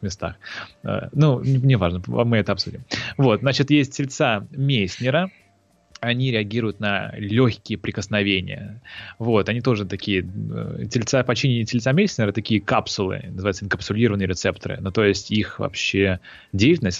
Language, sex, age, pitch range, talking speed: Russian, male, 20-39, 100-125 Hz, 125 wpm